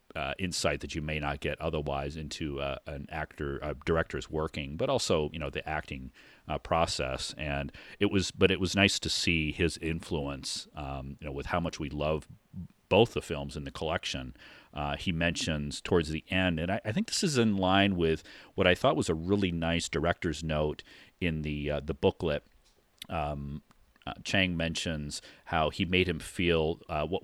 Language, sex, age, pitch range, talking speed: English, male, 40-59, 75-90 Hz, 195 wpm